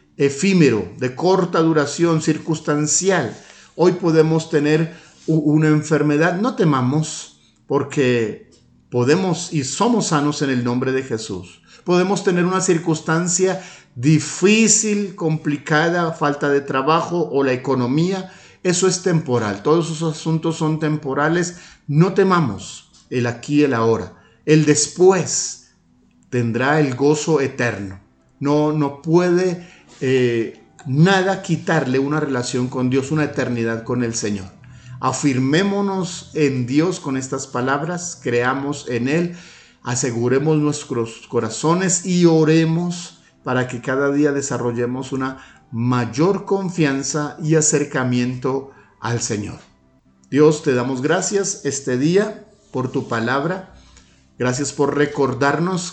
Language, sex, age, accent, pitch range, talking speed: Spanish, male, 50-69, Mexican, 130-170 Hz, 115 wpm